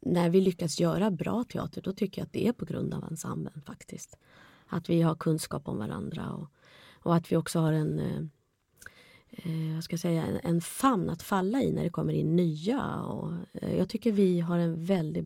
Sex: female